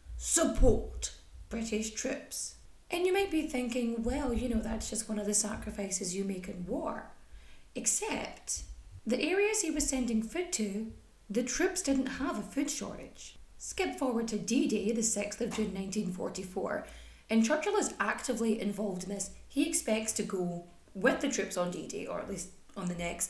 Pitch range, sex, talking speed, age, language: 205-275 Hz, female, 175 wpm, 30-49, English